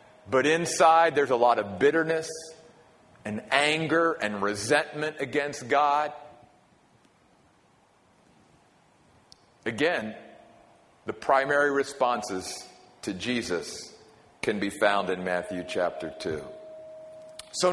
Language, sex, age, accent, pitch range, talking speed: English, male, 50-69, American, 150-250 Hz, 90 wpm